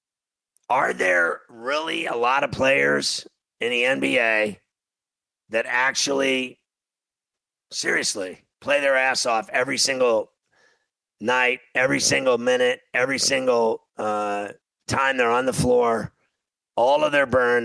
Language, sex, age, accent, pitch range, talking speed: English, male, 50-69, American, 115-135 Hz, 120 wpm